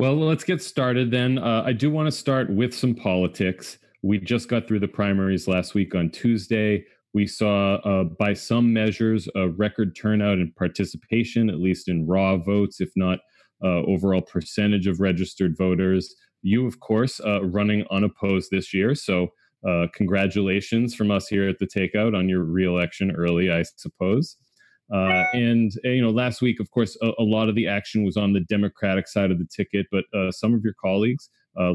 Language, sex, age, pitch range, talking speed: English, male, 30-49, 90-110 Hz, 190 wpm